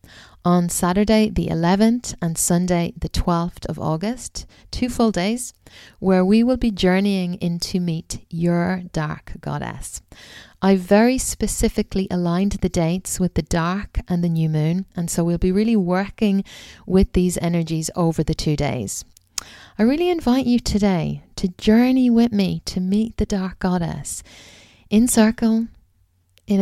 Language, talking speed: English, 150 wpm